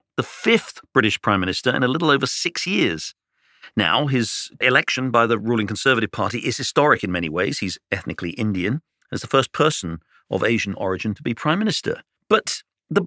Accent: British